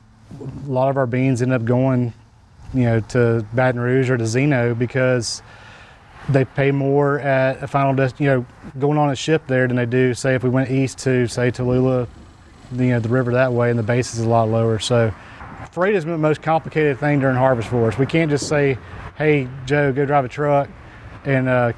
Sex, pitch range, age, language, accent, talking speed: male, 115-140 Hz, 30-49, English, American, 210 wpm